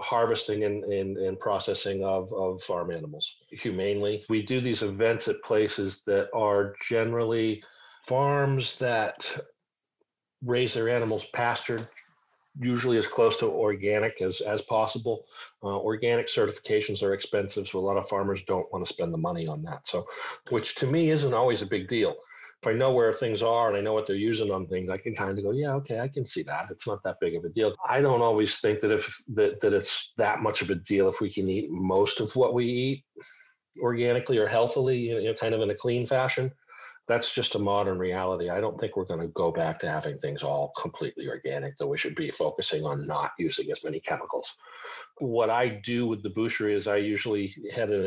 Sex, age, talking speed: male, 40-59, 205 wpm